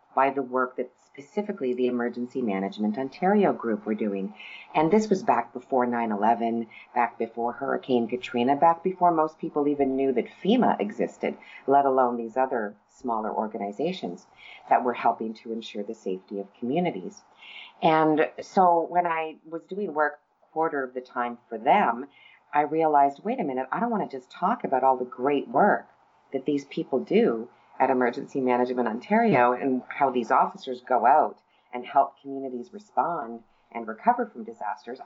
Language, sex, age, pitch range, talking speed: English, female, 40-59, 120-150 Hz, 170 wpm